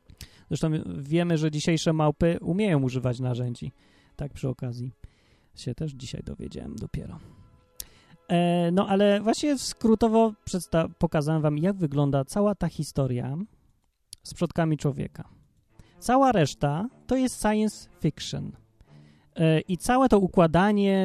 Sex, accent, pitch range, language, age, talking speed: male, native, 135-185 Hz, Polish, 30-49, 115 wpm